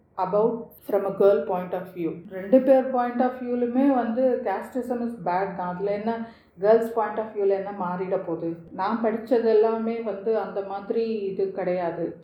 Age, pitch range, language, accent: 40-59, 180-220 Hz, Tamil, native